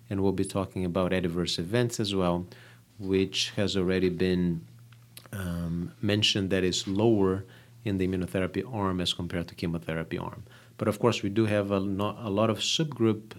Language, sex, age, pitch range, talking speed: English, male, 30-49, 95-115 Hz, 165 wpm